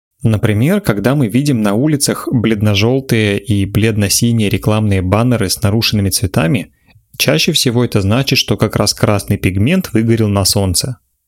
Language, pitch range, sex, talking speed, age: Russian, 100-120 Hz, male, 140 wpm, 30-49